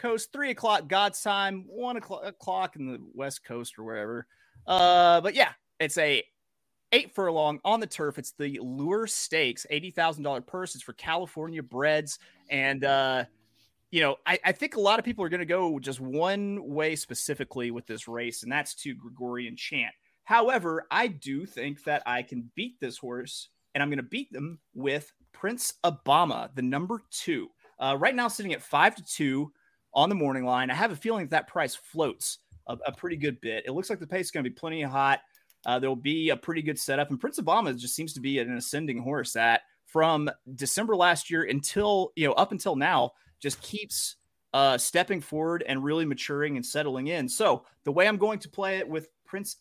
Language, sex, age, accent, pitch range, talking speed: English, male, 30-49, American, 135-190 Hz, 205 wpm